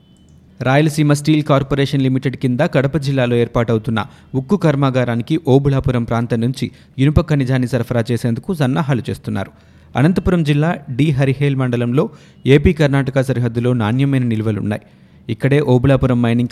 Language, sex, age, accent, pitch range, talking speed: Telugu, male, 30-49, native, 120-145 Hz, 115 wpm